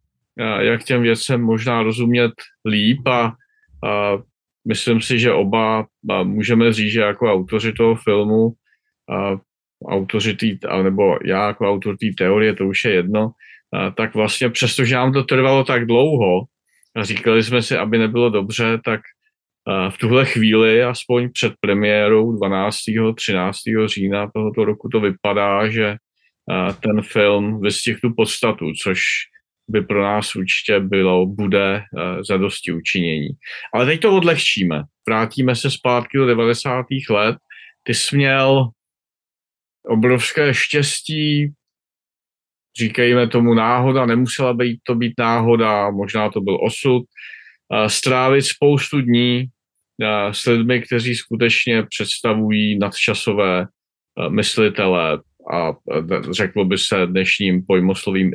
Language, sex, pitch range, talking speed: Czech, male, 105-125 Hz, 125 wpm